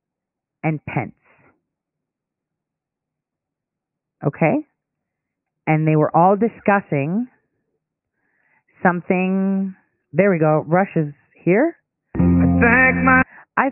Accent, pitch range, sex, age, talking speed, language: American, 150-200 Hz, female, 30-49, 65 wpm, English